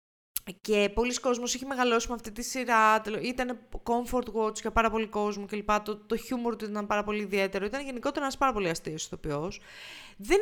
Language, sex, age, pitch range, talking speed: Greek, female, 20-39, 200-245 Hz, 195 wpm